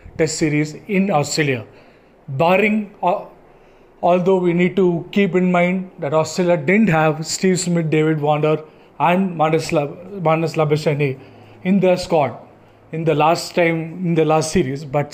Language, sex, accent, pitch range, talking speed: English, male, Indian, 155-185 Hz, 145 wpm